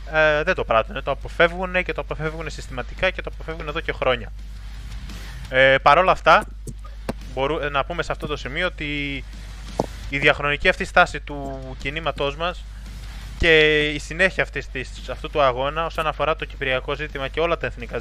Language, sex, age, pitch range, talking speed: Greek, male, 20-39, 125-155 Hz, 175 wpm